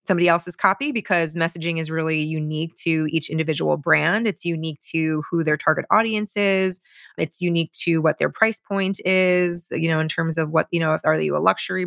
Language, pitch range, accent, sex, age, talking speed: English, 160-180 Hz, American, female, 20-39, 200 wpm